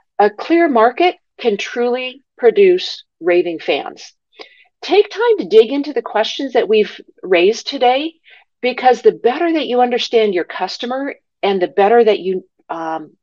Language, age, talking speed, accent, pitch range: English, 50-69, 150 wpm, American, 215-355 Hz